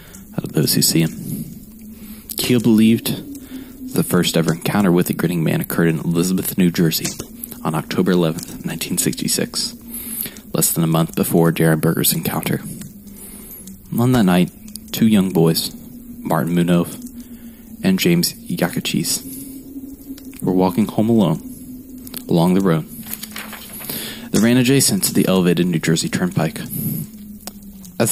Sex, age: male, 20-39